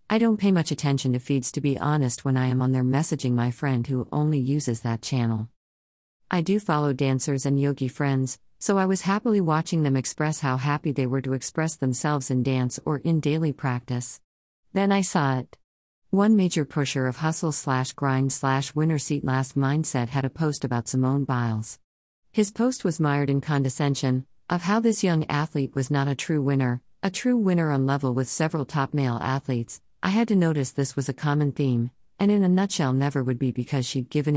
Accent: American